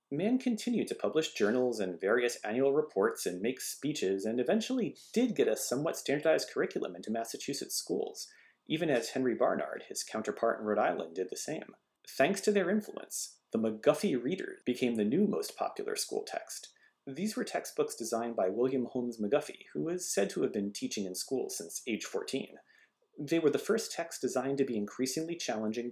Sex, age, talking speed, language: male, 40-59, 185 wpm, English